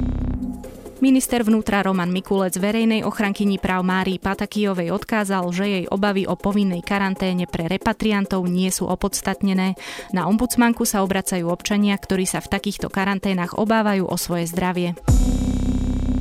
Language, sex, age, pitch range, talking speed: Slovak, female, 20-39, 180-205 Hz, 130 wpm